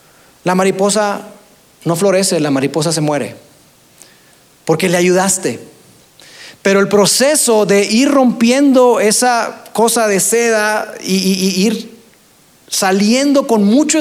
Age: 40-59